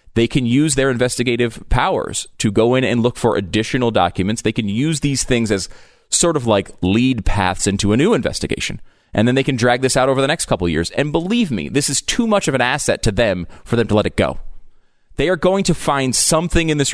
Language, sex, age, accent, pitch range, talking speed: English, male, 30-49, American, 100-145 Hz, 240 wpm